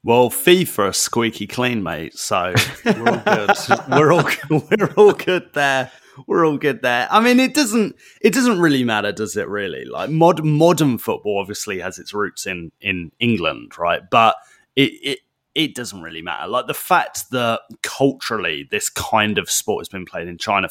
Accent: British